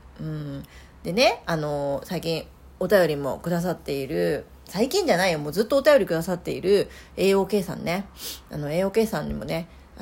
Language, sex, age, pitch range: Japanese, female, 40-59, 170-255 Hz